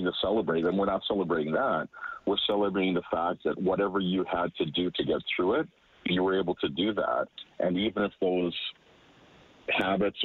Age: 40-59